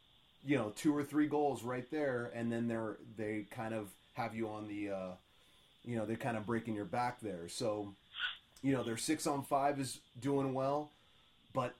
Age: 30-49